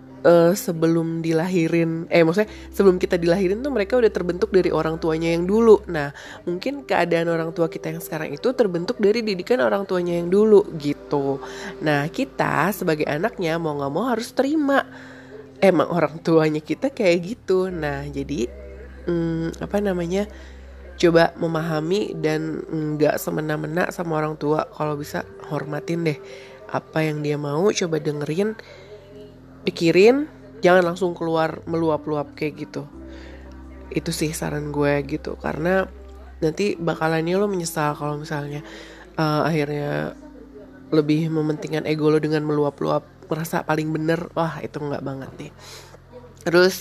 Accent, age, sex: native, 20-39, female